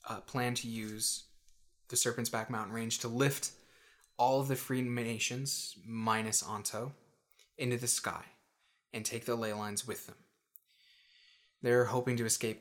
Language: English